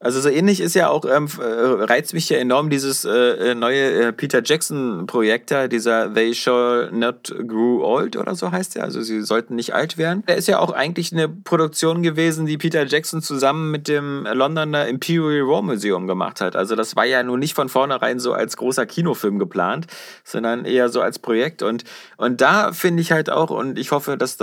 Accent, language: German, German